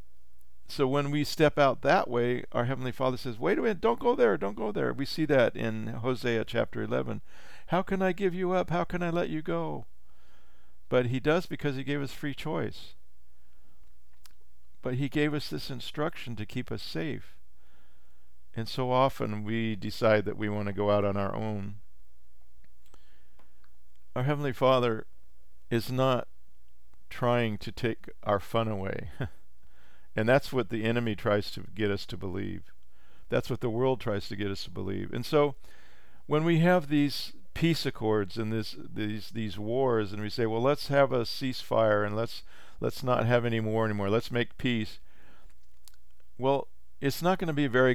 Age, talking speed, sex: 50-69, 180 wpm, male